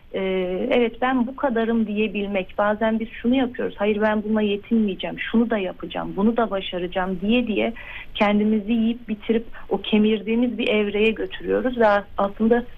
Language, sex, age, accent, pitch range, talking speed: Turkish, female, 40-59, native, 200-235 Hz, 145 wpm